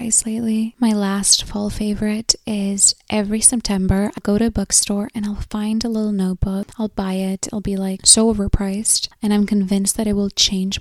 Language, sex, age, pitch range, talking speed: English, female, 10-29, 195-220 Hz, 190 wpm